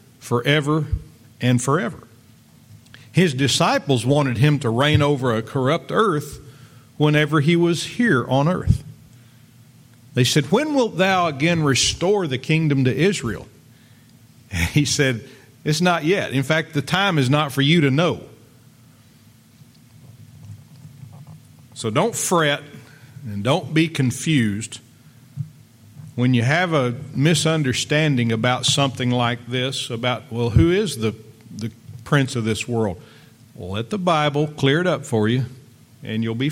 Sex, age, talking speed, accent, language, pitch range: male, 50-69, 135 wpm, American, English, 120-150 Hz